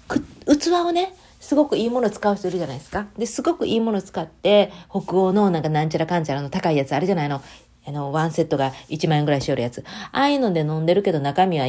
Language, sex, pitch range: Japanese, female, 145-215 Hz